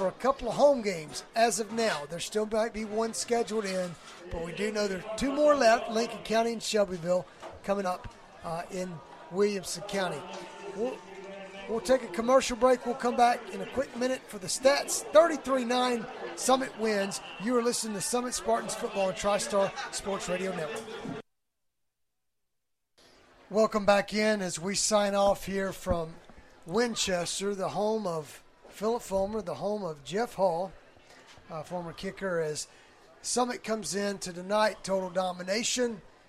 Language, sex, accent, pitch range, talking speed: English, male, American, 175-215 Hz, 160 wpm